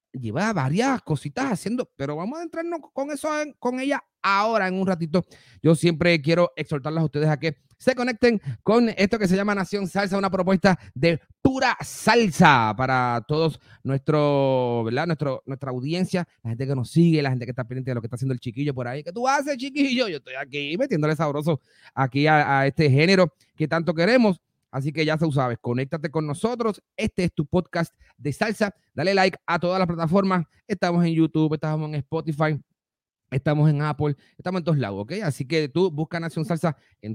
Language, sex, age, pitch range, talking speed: Spanish, male, 30-49, 130-185 Hz, 195 wpm